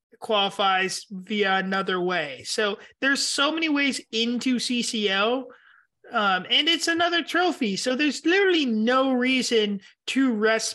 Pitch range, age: 195-245 Hz, 30-49